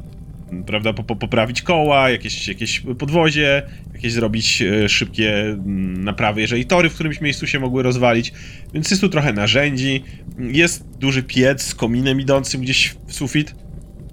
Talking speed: 135 wpm